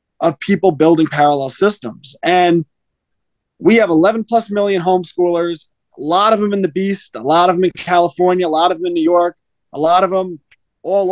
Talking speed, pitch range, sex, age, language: 200 wpm, 160-195 Hz, male, 20-39, English